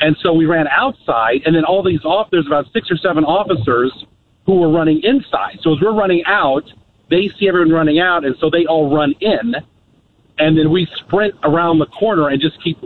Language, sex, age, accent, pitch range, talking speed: English, male, 50-69, American, 140-175 Hz, 215 wpm